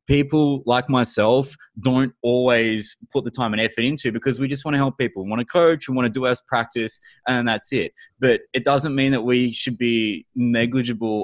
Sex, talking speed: male, 215 wpm